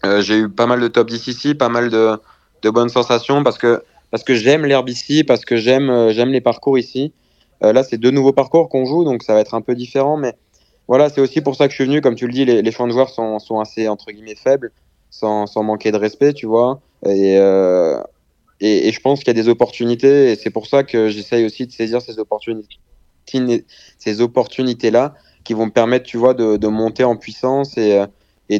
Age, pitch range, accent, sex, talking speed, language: 20-39, 105-125 Hz, French, male, 235 wpm, French